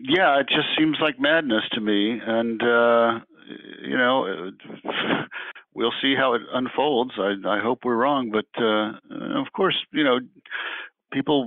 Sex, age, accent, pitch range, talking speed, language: male, 50-69, American, 100-130 Hz, 150 wpm, English